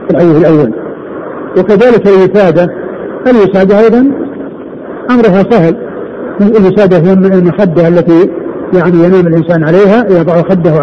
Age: 50-69